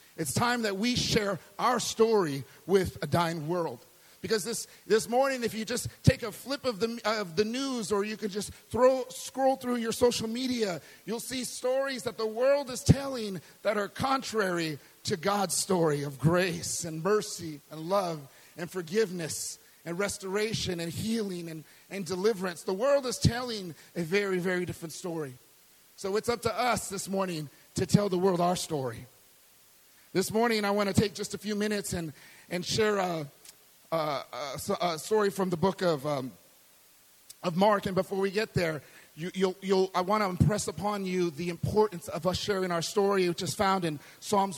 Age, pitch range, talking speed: 40-59, 165-215 Hz, 185 wpm